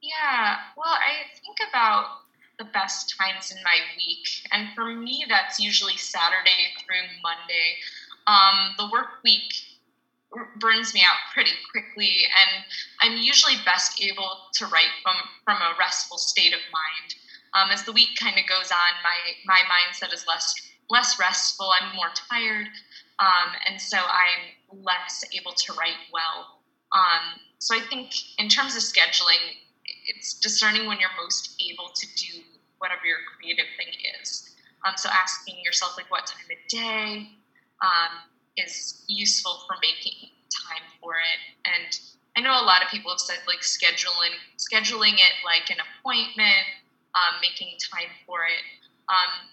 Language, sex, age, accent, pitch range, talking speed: English, female, 20-39, American, 180-215 Hz, 160 wpm